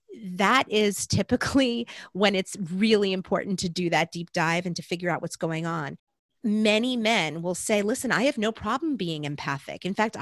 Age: 40-59